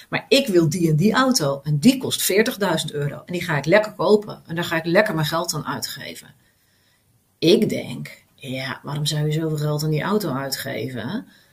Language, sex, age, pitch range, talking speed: Dutch, female, 40-59, 150-205 Hz, 205 wpm